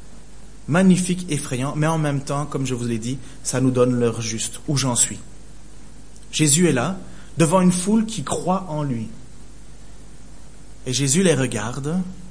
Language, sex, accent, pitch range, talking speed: French, male, French, 135-195 Hz, 160 wpm